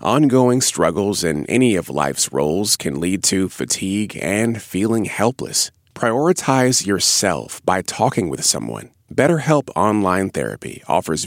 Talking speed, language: 130 wpm, English